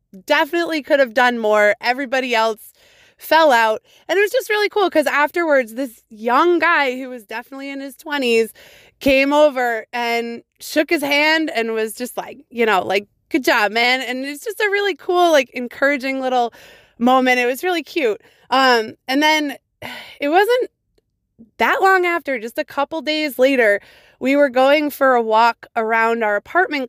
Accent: American